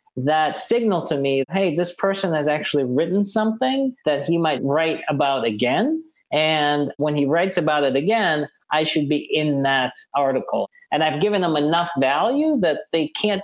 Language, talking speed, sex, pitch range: English, 175 wpm, male, 130-175 Hz